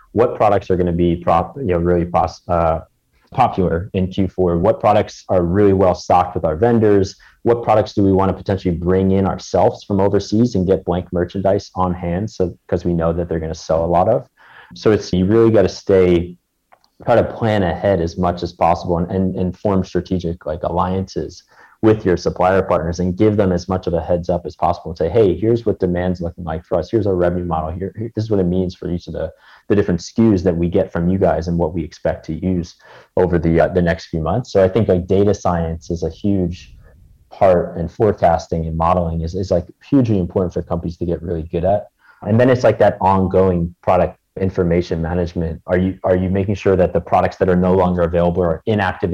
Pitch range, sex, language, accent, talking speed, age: 85-95 Hz, male, English, American, 230 wpm, 30-49